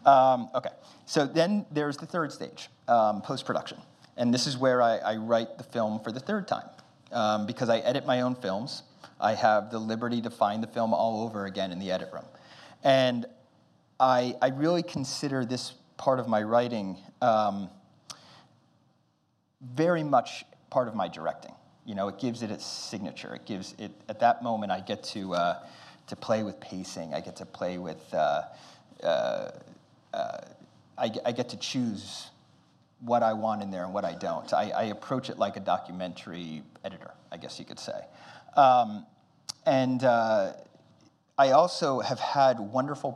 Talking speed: 175 wpm